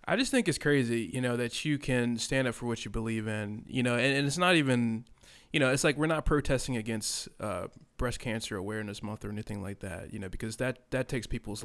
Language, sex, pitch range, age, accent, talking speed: English, male, 110-125 Hz, 20-39, American, 245 wpm